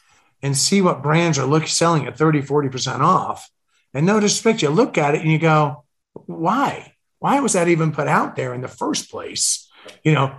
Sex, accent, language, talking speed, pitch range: male, American, English, 195 wpm, 130-160 Hz